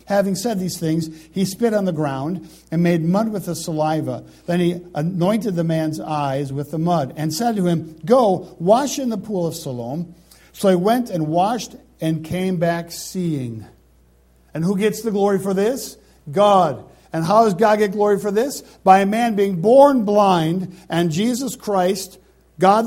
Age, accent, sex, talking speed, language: 50-69, American, male, 185 wpm, English